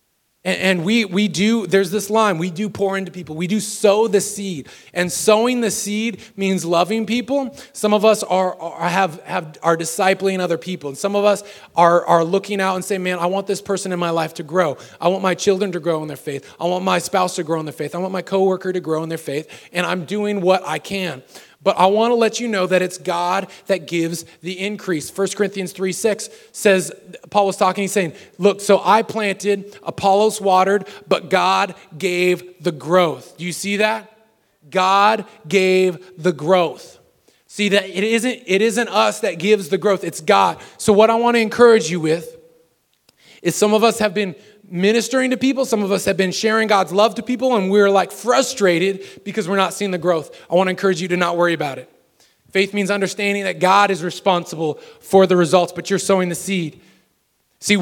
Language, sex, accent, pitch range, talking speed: English, male, American, 175-205 Hz, 215 wpm